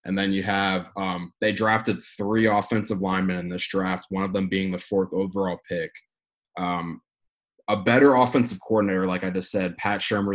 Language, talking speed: English, 190 wpm